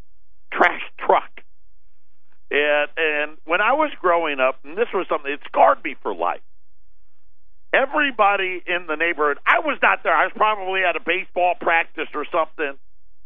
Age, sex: 50-69, male